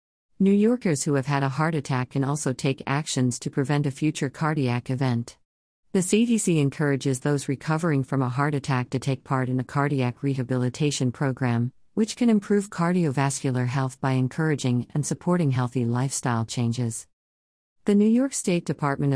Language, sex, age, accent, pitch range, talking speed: English, female, 50-69, American, 125-155 Hz, 165 wpm